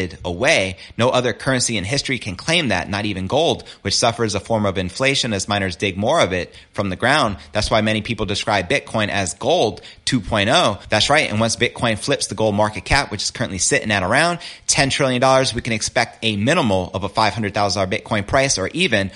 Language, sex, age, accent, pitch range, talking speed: English, male, 30-49, American, 100-120 Hz, 205 wpm